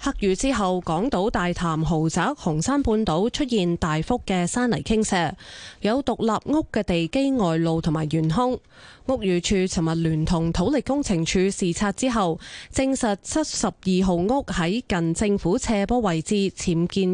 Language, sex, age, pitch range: Chinese, female, 20-39, 170-235 Hz